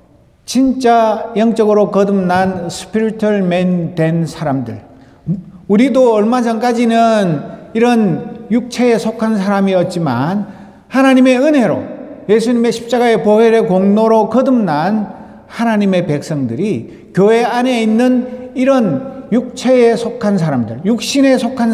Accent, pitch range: native, 175-235 Hz